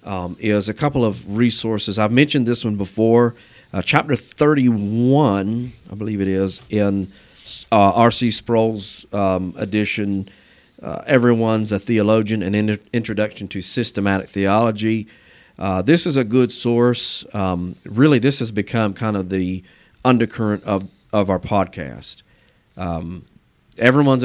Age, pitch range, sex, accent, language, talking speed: 50-69, 95-115 Hz, male, American, English, 135 wpm